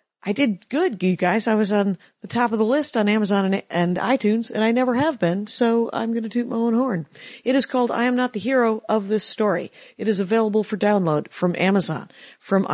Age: 50-69